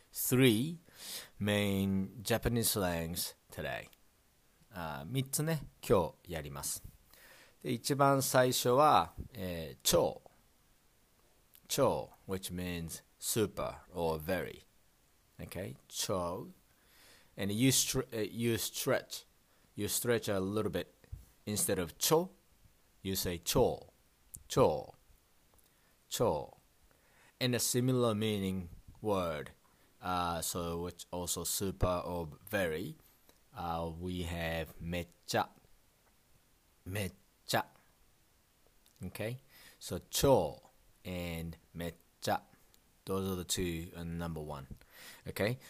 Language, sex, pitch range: Japanese, male, 85-115 Hz